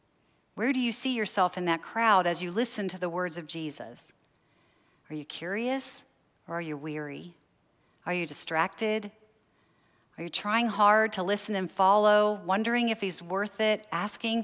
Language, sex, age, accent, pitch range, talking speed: English, female, 40-59, American, 170-220 Hz, 165 wpm